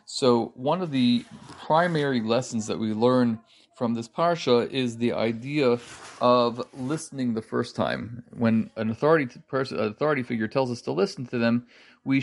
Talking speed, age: 165 wpm, 40-59